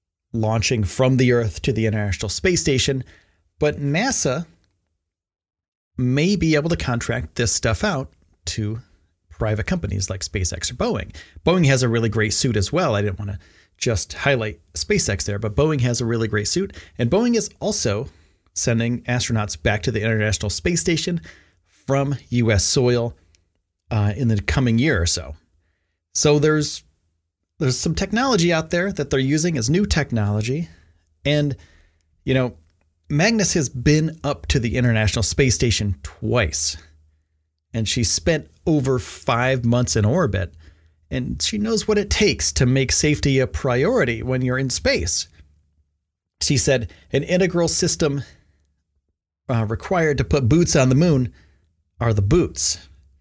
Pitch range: 85-135 Hz